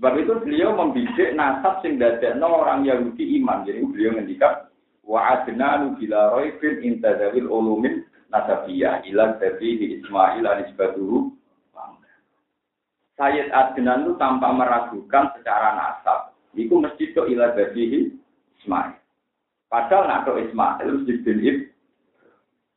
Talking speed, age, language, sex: 110 wpm, 50-69, Indonesian, male